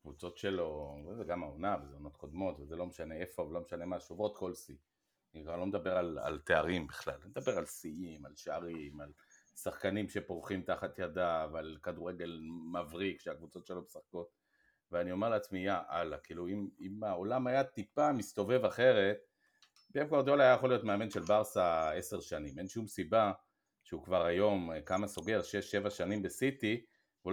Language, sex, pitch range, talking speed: Hebrew, male, 85-110 Hz, 170 wpm